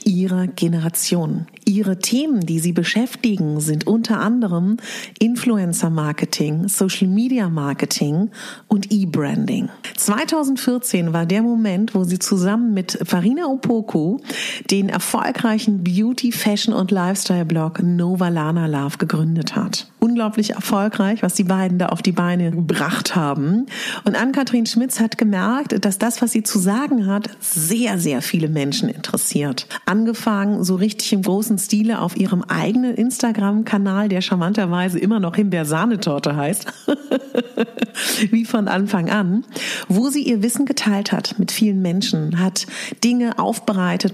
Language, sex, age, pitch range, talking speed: German, female, 40-59, 185-230 Hz, 135 wpm